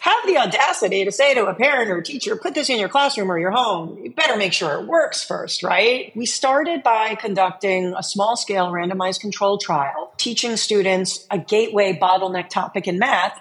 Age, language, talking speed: 40-59, English, 195 wpm